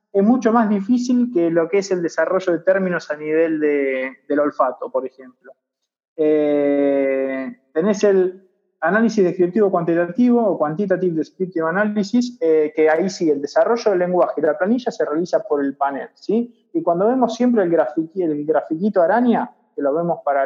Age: 20-39